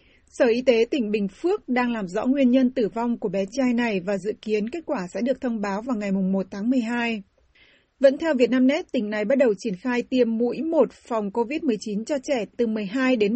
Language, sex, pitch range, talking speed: Vietnamese, female, 215-260 Hz, 225 wpm